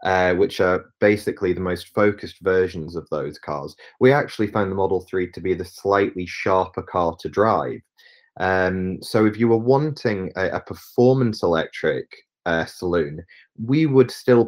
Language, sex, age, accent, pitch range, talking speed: English, male, 30-49, British, 95-115 Hz, 165 wpm